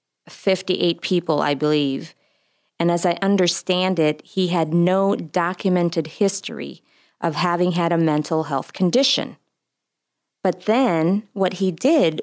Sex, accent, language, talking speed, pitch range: female, American, English, 130 wpm, 155-195 Hz